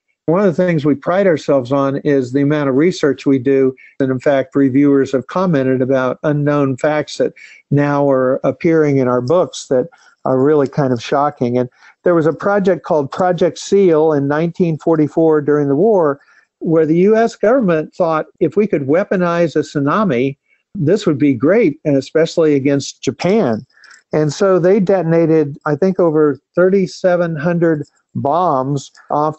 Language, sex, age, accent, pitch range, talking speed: English, male, 50-69, American, 140-165 Hz, 160 wpm